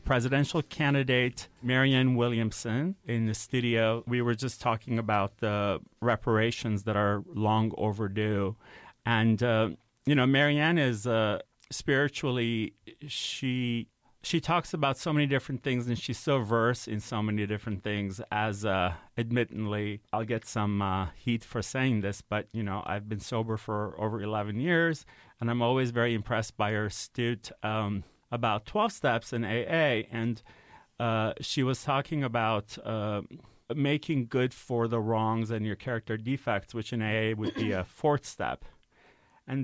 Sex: male